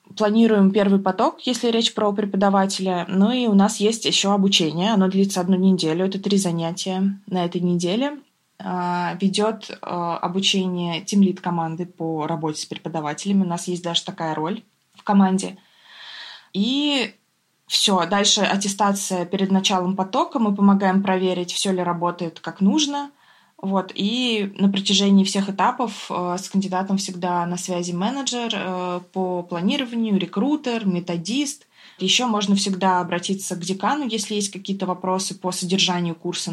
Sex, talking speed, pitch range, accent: female, 145 wpm, 175-205 Hz, native